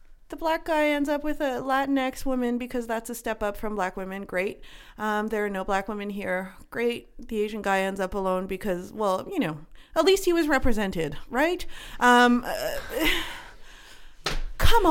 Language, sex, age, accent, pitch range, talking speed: English, female, 30-49, American, 195-295 Hz, 180 wpm